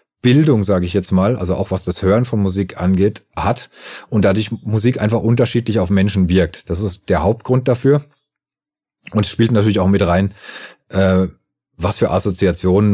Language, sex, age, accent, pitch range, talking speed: German, male, 40-59, German, 85-110 Hz, 165 wpm